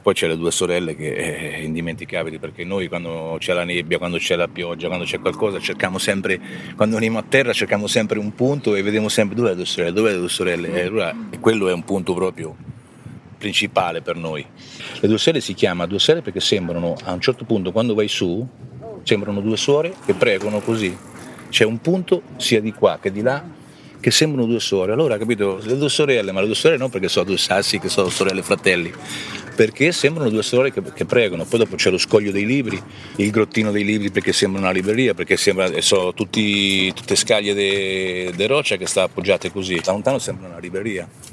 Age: 40-59